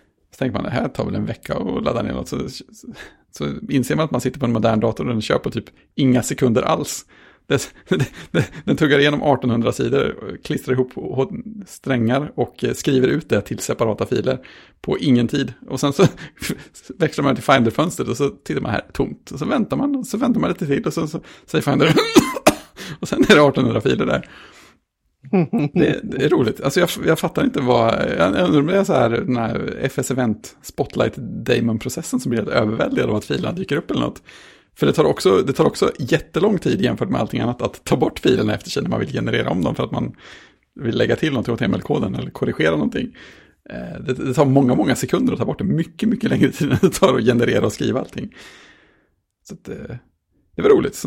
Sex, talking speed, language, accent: male, 220 wpm, Swedish, Norwegian